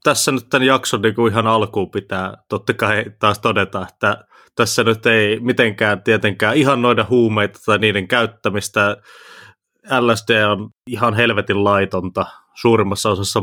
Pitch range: 100-115 Hz